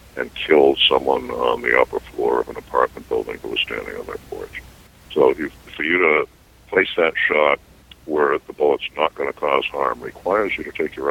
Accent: American